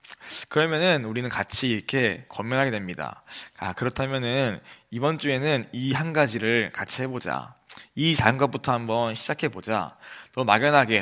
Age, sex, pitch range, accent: 20-39, male, 110-145 Hz, native